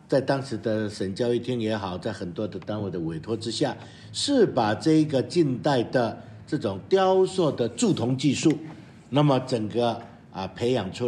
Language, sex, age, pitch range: Chinese, male, 60-79, 105-150 Hz